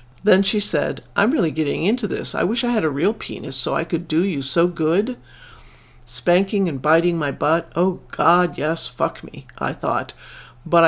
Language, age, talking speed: English, 50-69, 195 wpm